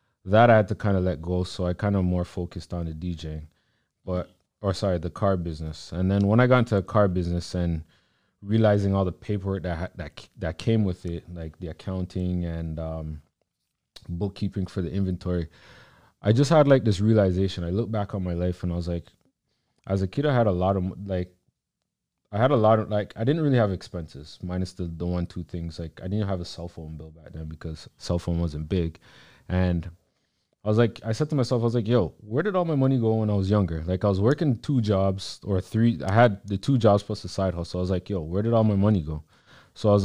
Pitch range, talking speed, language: 85-105 Hz, 240 wpm, English